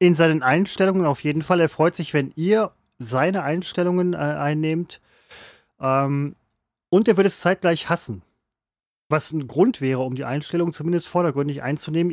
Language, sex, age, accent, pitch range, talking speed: German, male, 30-49, German, 135-170 Hz, 160 wpm